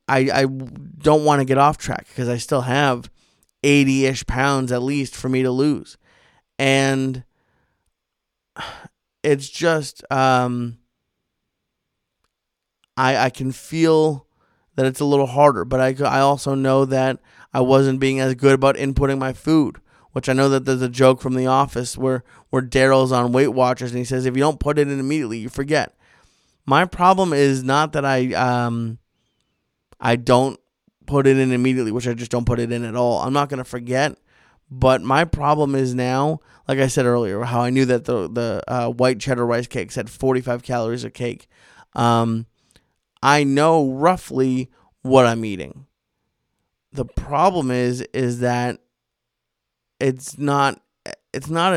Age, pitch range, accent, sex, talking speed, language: 20-39, 125-140 Hz, American, male, 165 wpm, English